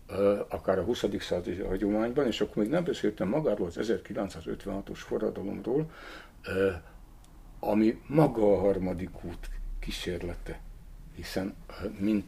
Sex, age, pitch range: male, 60-79, 90-105 Hz